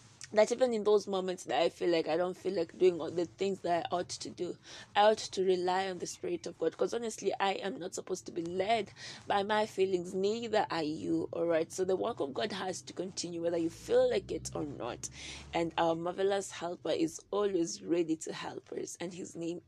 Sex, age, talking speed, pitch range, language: female, 20-39, 230 wpm, 175-220 Hz, English